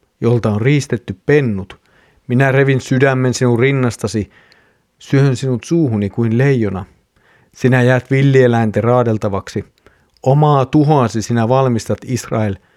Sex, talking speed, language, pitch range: male, 110 wpm, Finnish, 115-130 Hz